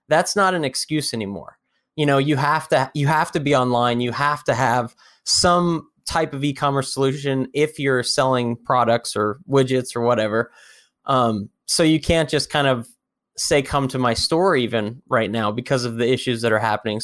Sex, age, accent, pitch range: male, 20-39, American, 120-150 Hz